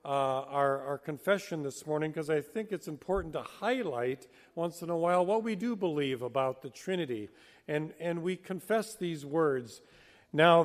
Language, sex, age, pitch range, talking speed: English, male, 50-69, 140-185 Hz, 175 wpm